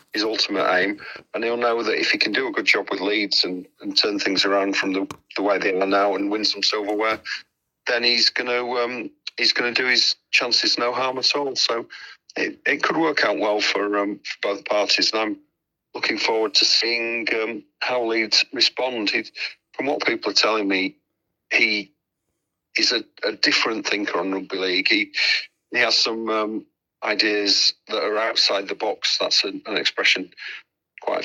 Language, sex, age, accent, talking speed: English, male, 50-69, British, 190 wpm